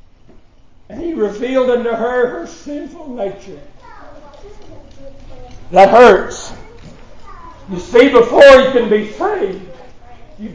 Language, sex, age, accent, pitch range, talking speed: English, male, 60-79, American, 220-270 Hz, 100 wpm